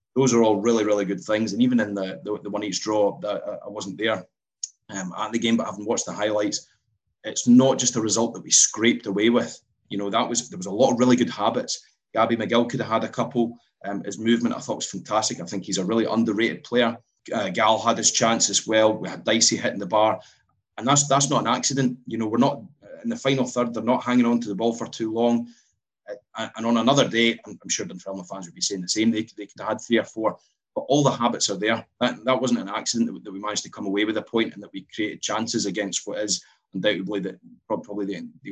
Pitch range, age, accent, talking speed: 100-120 Hz, 30-49, British, 265 wpm